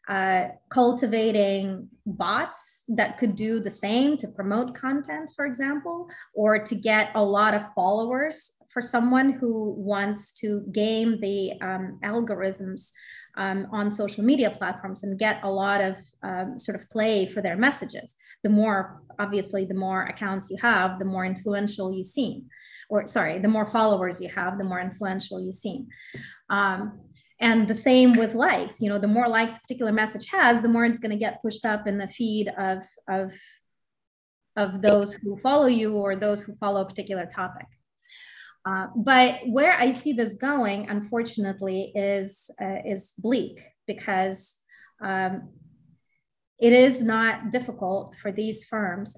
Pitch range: 195-235 Hz